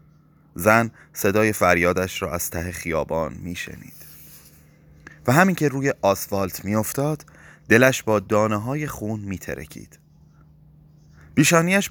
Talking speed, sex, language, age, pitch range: 105 wpm, male, Persian, 30-49, 90-125 Hz